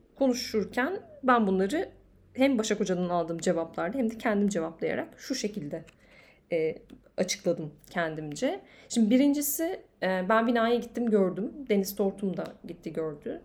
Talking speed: 130 wpm